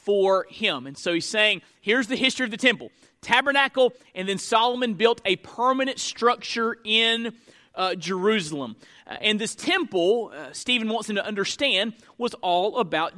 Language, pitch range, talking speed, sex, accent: English, 195-260 Hz, 160 wpm, male, American